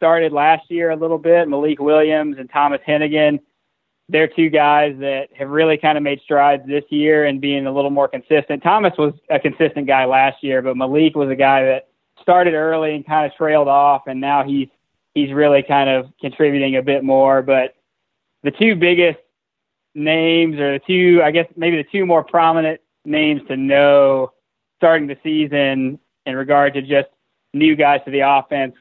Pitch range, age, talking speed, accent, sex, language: 135-155 Hz, 20-39, 185 wpm, American, male, English